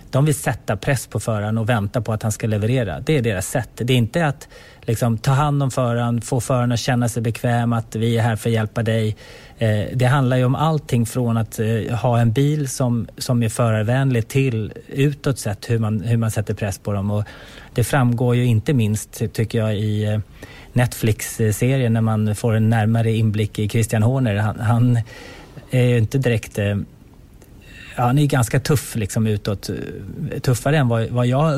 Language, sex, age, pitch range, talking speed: Swedish, male, 30-49, 110-130 Hz, 200 wpm